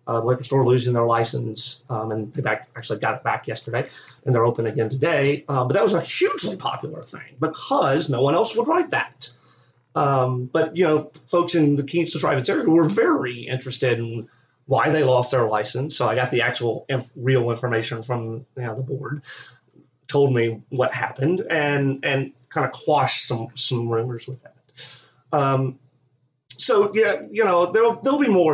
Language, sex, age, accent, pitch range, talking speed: English, male, 30-49, American, 120-140 Hz, 190 wpm